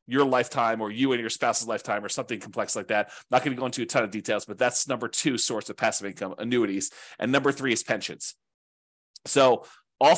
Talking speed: 225 wpm